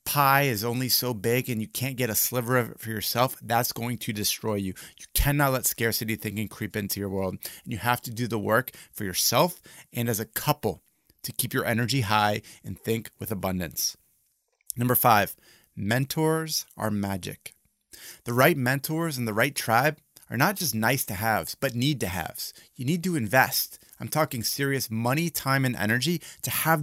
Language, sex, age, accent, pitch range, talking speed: English, male, 30-49, American, 115-145 Hz, 190 wpm